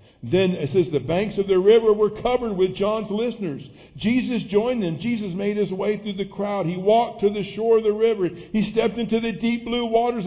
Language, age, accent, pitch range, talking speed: English, 60-79, American, 150-210 Hz, 220 wpm